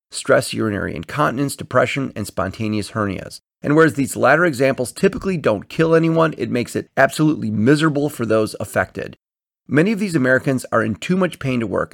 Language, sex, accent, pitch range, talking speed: English, male, American, 110-150 Hz, 175 wpm